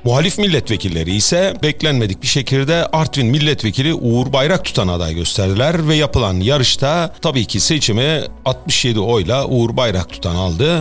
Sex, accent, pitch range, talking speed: male, native, 110-160 Hz, 140 wpm